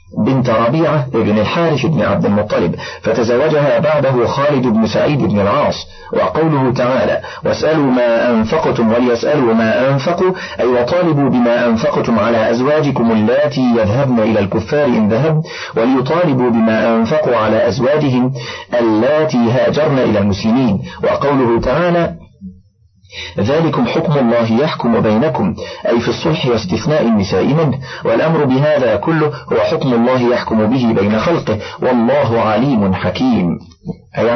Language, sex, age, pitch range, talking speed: Arabic, male, 50-69, 115-150 Hz, 120 wpm